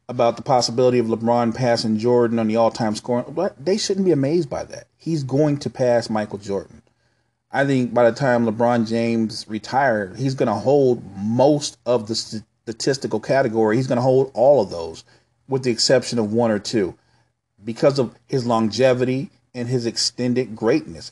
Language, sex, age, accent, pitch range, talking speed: English, male, 40-59, American, 115-135 Hz, 180 wpm